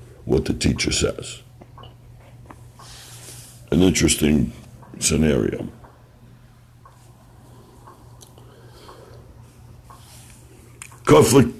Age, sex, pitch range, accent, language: 60-79, male, 105-125 Hz, American, English